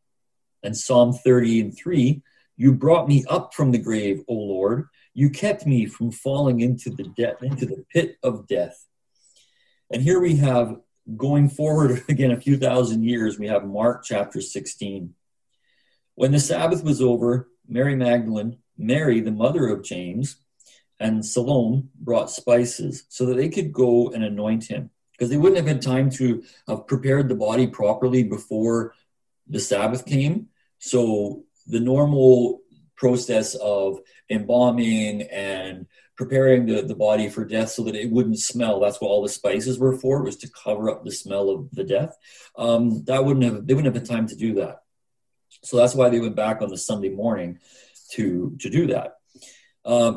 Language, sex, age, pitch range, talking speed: English, male, 40-59, 110-135 Hz, 170 wpm